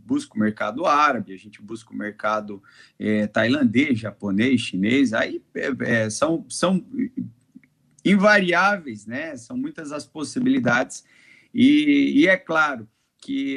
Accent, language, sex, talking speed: Brazilian, Portuguese, male, 115 wpm